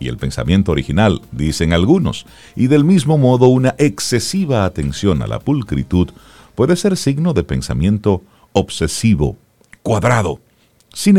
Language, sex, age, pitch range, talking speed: Spanish, male, 50-69, 80-115 Hz, 130 wpm